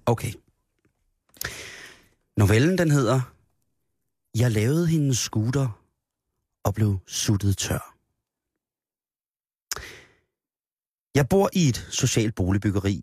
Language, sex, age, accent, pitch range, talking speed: Danish, male, 30-49, native, 100-125 Hz, 85 wpm